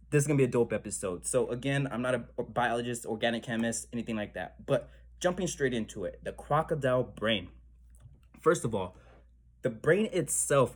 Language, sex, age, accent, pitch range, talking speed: English, male, 20-39, American, 110-135 Hz, 180 wpm